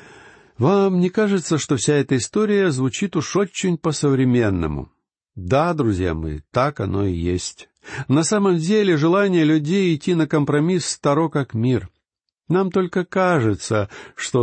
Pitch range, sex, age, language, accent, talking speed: 115-155 Hz, male, 60-79, Russian, native, 135 wpm